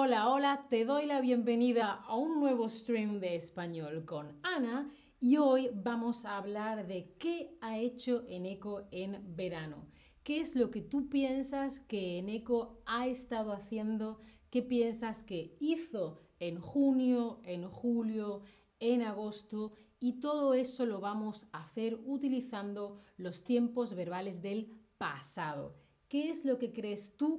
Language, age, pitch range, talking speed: Spanish, 30-49, 195-245 Hz, 145 wpm